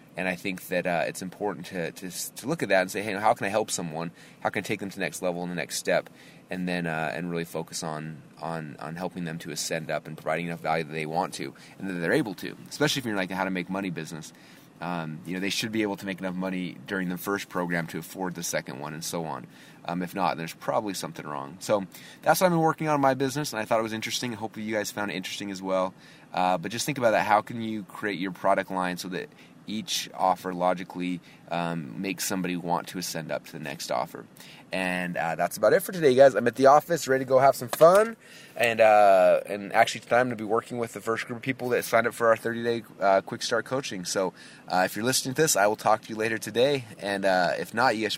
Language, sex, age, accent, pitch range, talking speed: English, male, 20-39, American, 85-110 Hz, 270 wpm